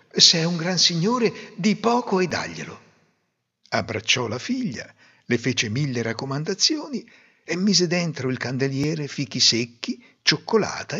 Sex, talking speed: male, 130 wpm